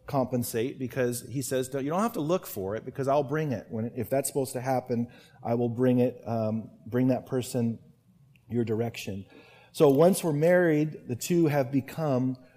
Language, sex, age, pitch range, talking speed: English, male, 40-59, 120-140 Hz, 185 wpm